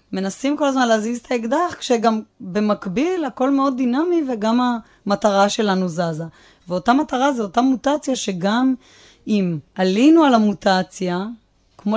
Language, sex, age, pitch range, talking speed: Hebrew, female, 30-49, 190-260 Hz, 130 wpm